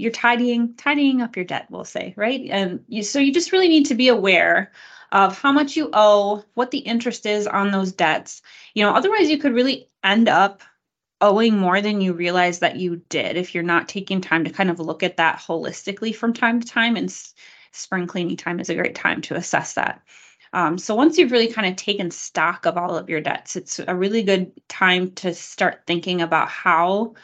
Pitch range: 170-230 Hz